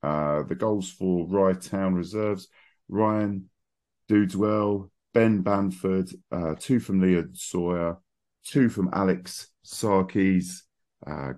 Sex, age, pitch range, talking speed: male, 40-59, 90-105 Hz, 110 wpm